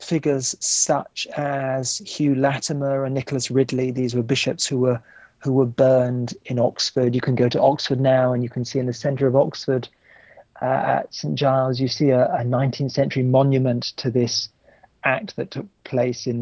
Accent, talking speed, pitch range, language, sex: British, 185 wpm, 130-150 Hz, English, male